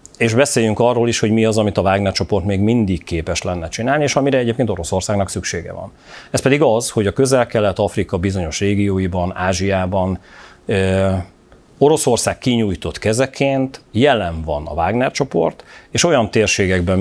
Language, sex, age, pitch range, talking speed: Hungarian, male, 40-59, 95-120 Hz, 150 wpm